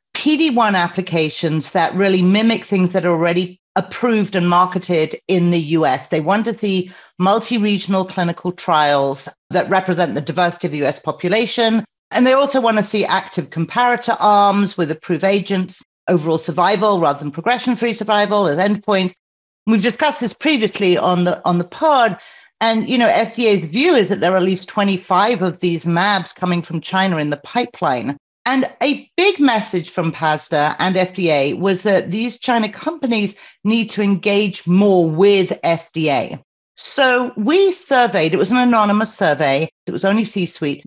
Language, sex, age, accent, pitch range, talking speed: English, female, 40-59, British, 170-225 Hz, 160 wpm